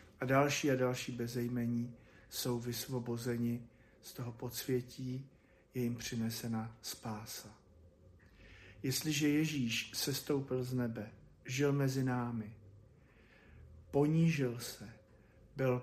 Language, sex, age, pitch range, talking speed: Slovak, male, 50-69, 115-135 Hz, 95 wpm